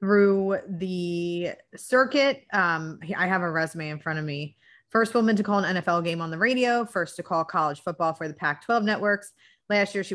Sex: female